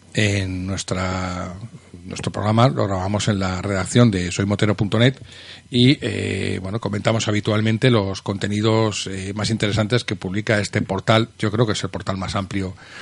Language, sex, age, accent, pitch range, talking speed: Spanish, male, 40-59, Spanish, 100-120 Hz, 150 wpm